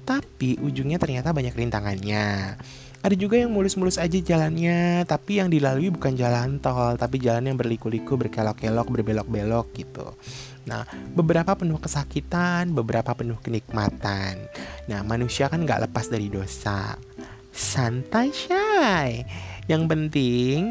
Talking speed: 120 wpm